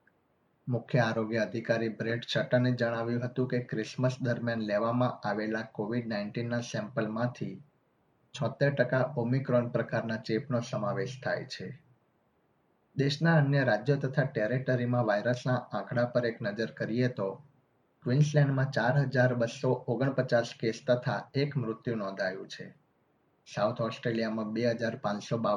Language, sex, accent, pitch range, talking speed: Gujarati, male, native, 115-130 Hz, 100 wpm